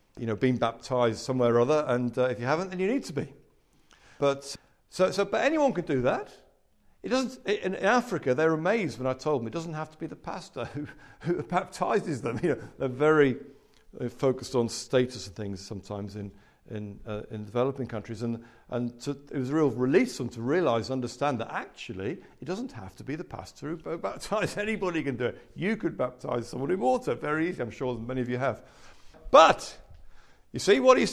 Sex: male